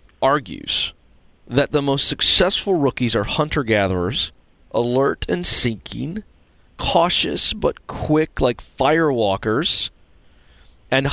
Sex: male